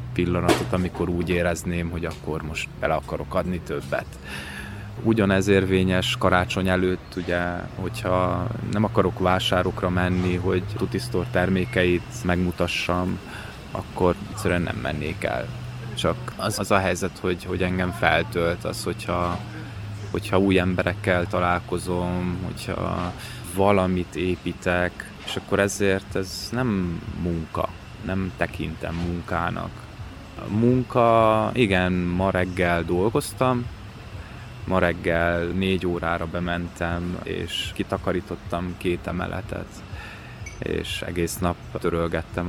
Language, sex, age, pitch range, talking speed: Hungarian, male, 20-39, 85-105 Hz, 105 wpm